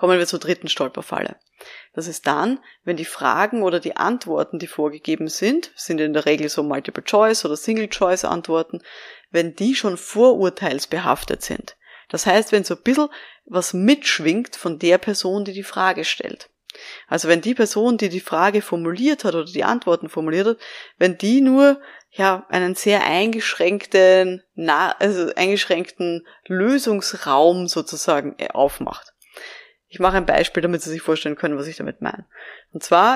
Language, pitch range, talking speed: German, 165-210 Hz, 155 wpm